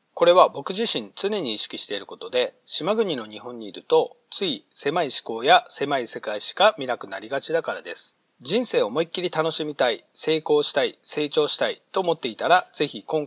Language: Japanese